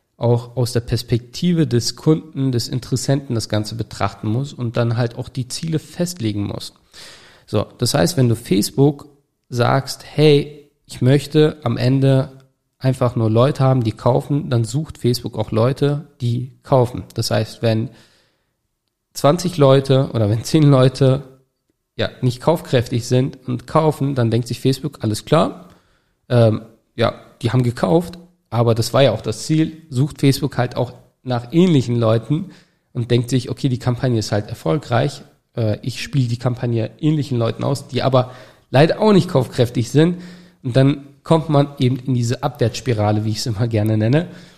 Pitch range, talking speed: 115-145 Hz, 165 wpm